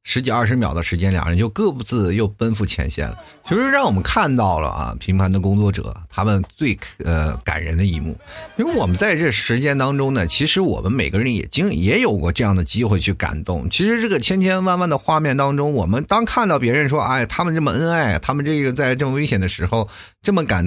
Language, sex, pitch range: Chinese, male, 90-135 Hz